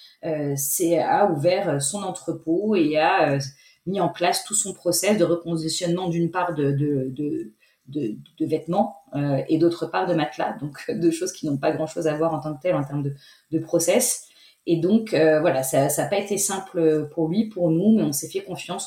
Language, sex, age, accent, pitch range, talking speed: French, female, 30-49, French, 150-180 Hz, 220 wpm